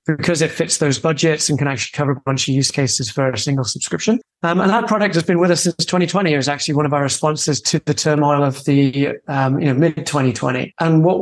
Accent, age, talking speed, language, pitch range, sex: British, 30-49, 245 wpm, English, 140-165 Hz, male